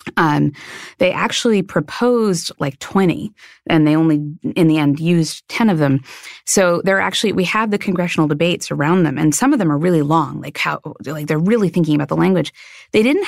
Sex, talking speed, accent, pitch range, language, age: female, 200 wpm, American, 155-195 Hz, English, 30-49